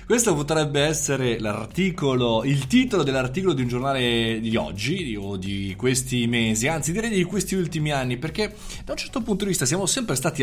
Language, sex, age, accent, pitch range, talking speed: Italian, male, 20-39, native, 115-155 Hz, 185 wpm